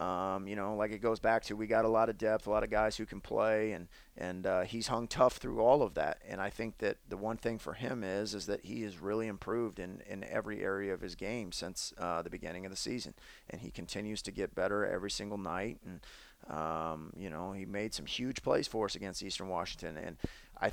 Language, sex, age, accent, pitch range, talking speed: English, male, 30-49, American, 95-115 Hz, 250 wpm